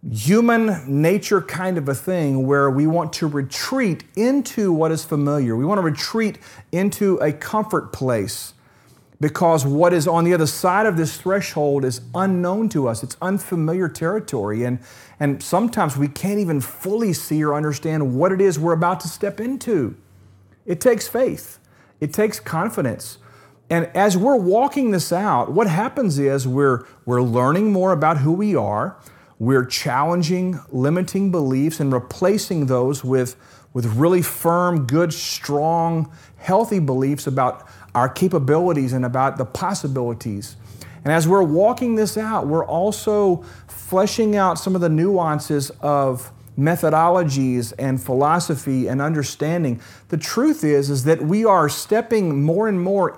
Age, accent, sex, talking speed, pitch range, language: 40-59, American, male, 150 wpm, 135-185 Hz, English